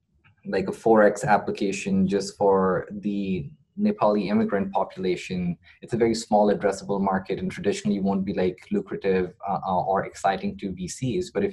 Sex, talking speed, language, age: male, 155 wpm, English, 20-39